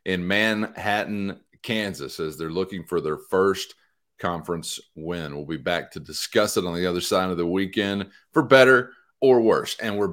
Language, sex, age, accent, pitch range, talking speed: English, male, 40-59, American, 100-140 Hz, 180 wpm